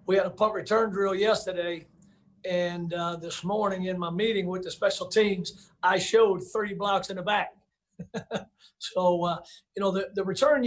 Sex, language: male, English